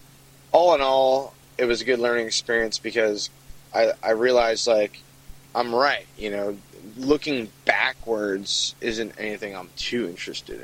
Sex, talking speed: male, 140 wpm